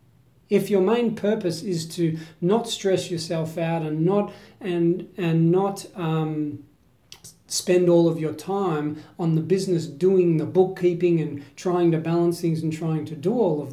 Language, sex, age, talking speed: English, male, 40-59, 165 wpm